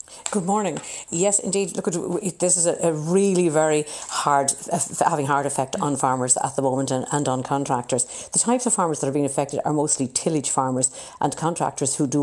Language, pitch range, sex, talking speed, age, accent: English, 135-155 Hz, female, 185 wpm, 50-69, Irish